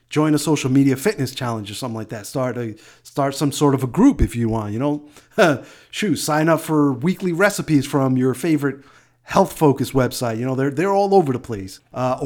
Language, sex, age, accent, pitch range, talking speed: English, male, 30-49, American, 125-155 Hz, 215 wpm